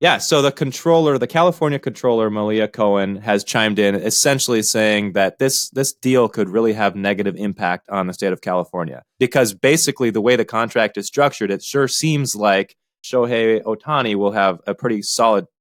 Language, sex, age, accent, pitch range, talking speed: English, male, 20-39, American, 100-130 Hz, 180 wpm